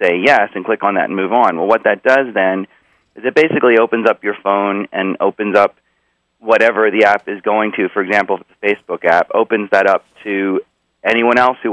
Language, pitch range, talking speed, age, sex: English, 95-110 Hz, 215 wpm, 30-49, male